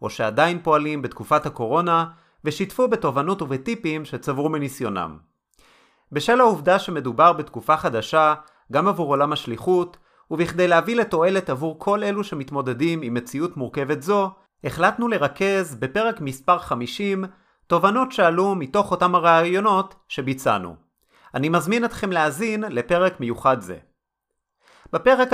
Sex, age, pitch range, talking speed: male, 30-49, 140-190 Hz, 115 wpm